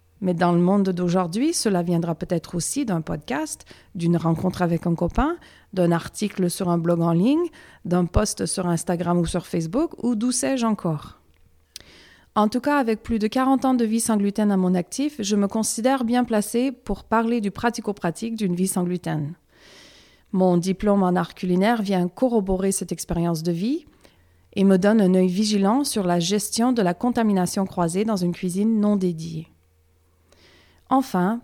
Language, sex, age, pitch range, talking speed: French, female, 40-59, 175-235 Hz, 175 wpm